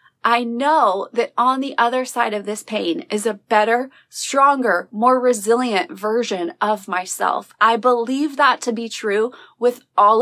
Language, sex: English, female